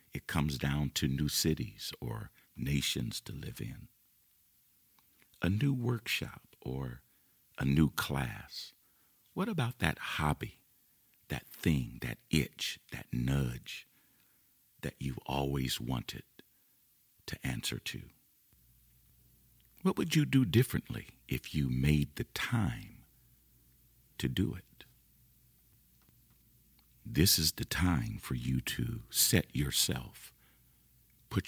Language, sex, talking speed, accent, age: English, male, 110 wpm, American, 50-69